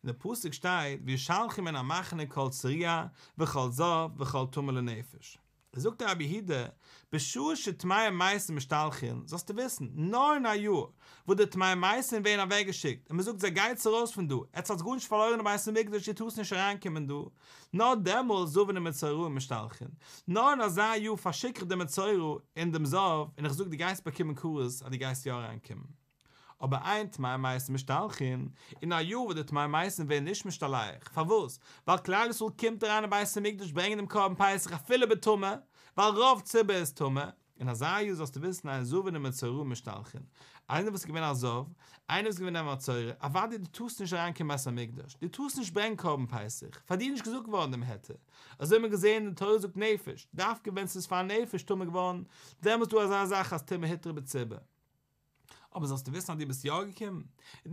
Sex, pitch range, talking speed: male, 140-205 Hz, 75 wpm